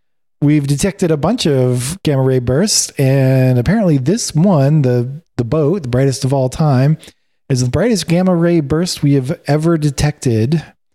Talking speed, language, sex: 155 wpm, English, male